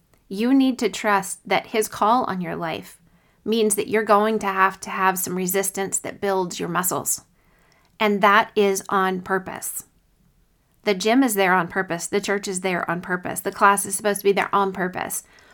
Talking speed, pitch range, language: 195 wpm, 195-230 Hz, English